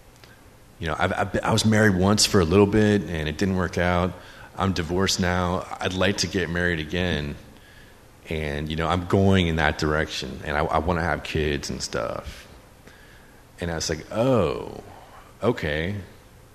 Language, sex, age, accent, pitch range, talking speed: English, male, 30-49, American, 80-105 Hz, 175 wpm